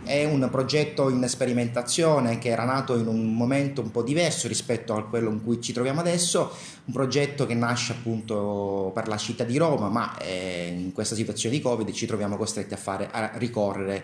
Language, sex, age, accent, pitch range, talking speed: Italian, male, 30-49, native, 110-145 Hz, 190 wpm